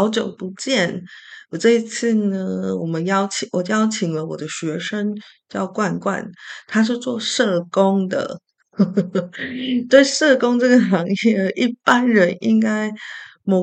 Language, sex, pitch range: Chinese, female, 170-225 Hz